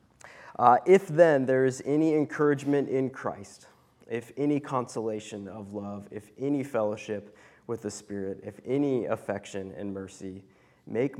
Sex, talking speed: male, 140 wpm